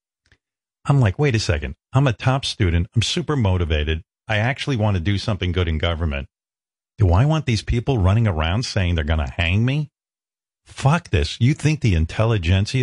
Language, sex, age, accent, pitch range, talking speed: English, male, 50-69, American, 85-110 Hz, 185 wpm